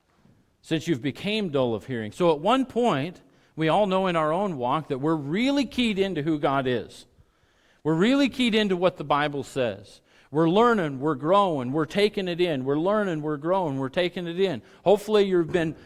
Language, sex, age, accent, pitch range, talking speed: English, male, 40-59, American, 135-195 Hz, 195 wpm